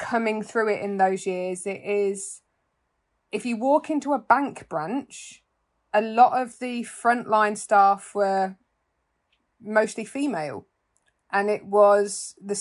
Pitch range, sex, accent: 190-220 Hz, female, British